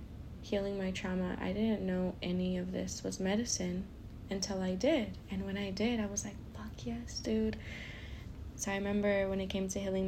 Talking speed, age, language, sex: 190 wpm, 20-39, English, female